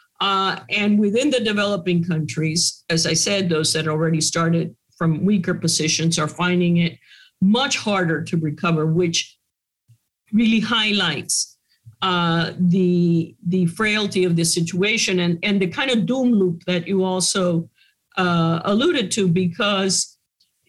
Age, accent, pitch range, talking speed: 50-69, American, 170-205 Hz, 135 wpm